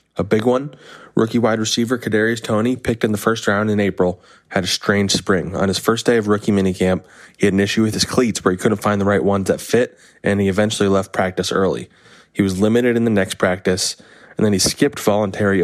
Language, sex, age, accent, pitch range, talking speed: English, male, 20-39, American, 95-110 Hz, 230 wpm